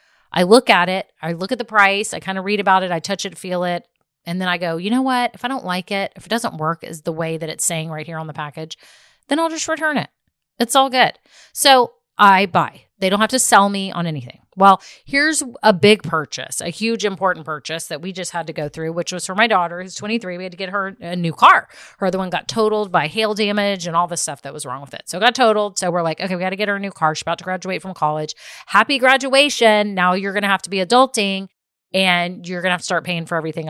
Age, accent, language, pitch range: 30-49, American, English, 170-205 Hz